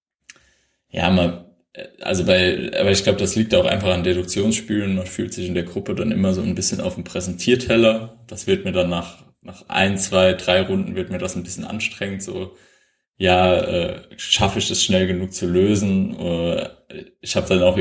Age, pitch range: 20-39, 90-105 Hz